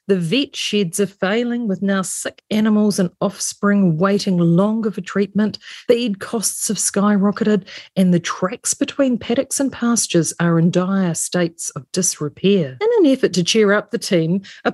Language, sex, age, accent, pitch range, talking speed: English, female, 40-59, Australian, 180-245 Hz, 165 wpm